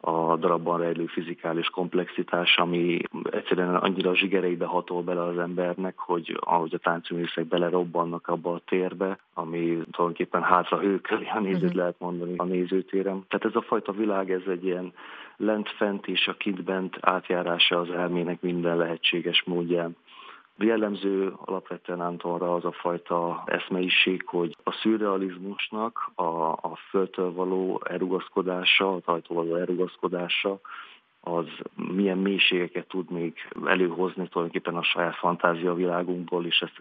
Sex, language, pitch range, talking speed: male, Hungarian, 85-95 Hz, 130 wpm